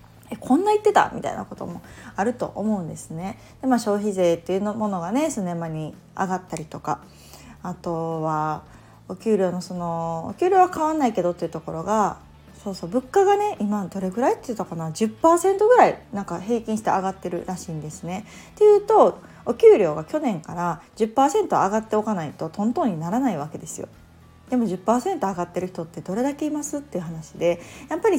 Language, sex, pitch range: Japanese, female, 170-240 Hz